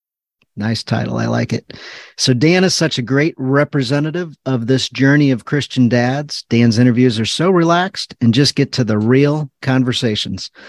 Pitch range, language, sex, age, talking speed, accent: 110-135 Hz, English, male, 40-59, 170 wpm, American